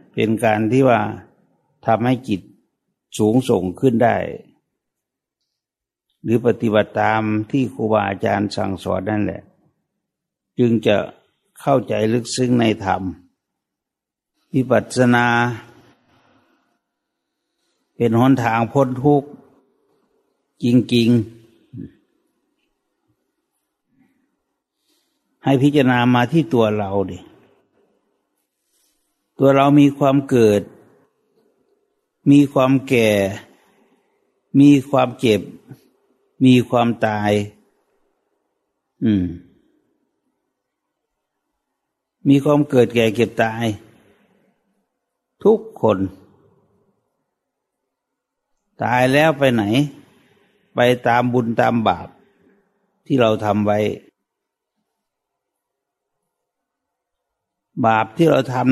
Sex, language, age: male, English, 60-79